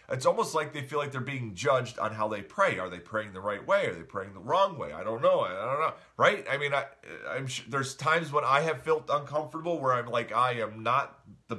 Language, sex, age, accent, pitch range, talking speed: English, male, 40-59, American, 130-190 Hz, 250 wpm